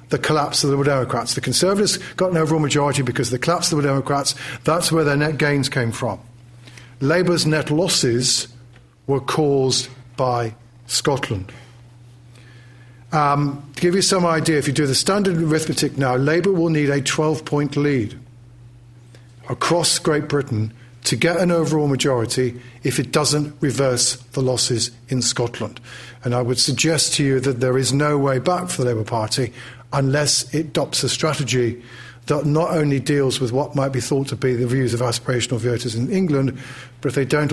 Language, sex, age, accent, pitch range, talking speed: English, male, 50-69, British, 125-155 Hz, 175 wpm